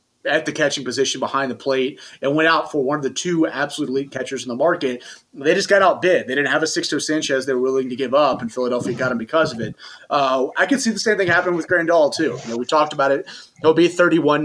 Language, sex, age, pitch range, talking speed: English, male, 30-49, 130-160 Hz, 260 wpm